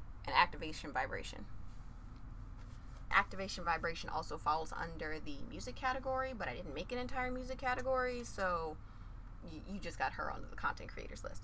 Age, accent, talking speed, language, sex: 20-39, American, 155 wpm, English, female